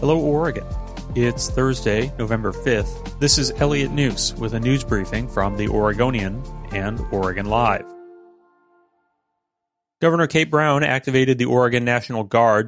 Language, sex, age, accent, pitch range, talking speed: English, male, 30-49, American, 105-130 Hz, 135 wpm